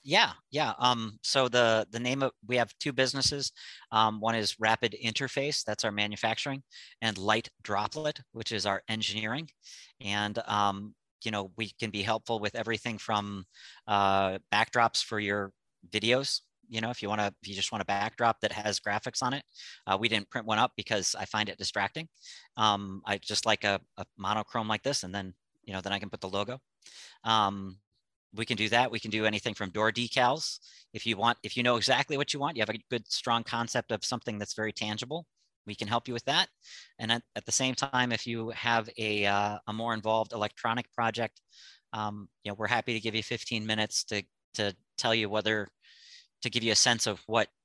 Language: English